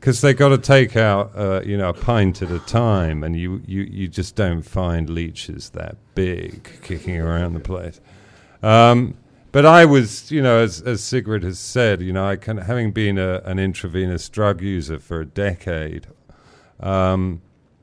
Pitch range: 85-110 Hz